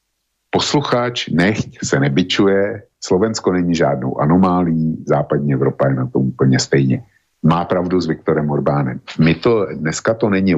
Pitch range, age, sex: 75-90 Hz, 50-69, male